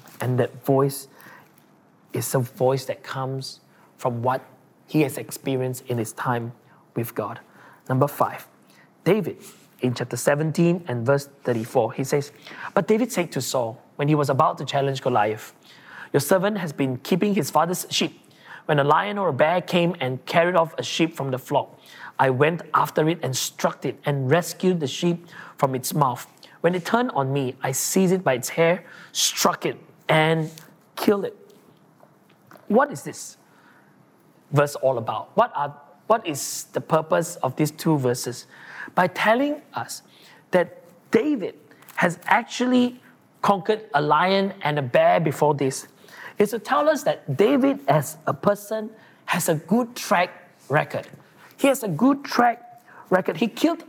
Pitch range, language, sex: 135-205 Hz, English, male